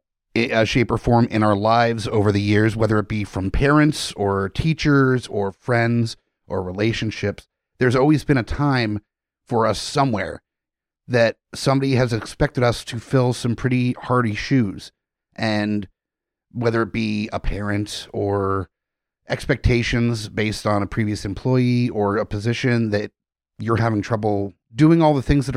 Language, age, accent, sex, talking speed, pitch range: English, 30-49, American, male, 150 wpm, 105-130 Hz